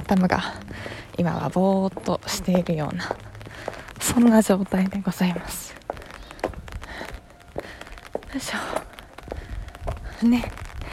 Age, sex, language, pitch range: 20-39, female, Japanese, 180-215 Hz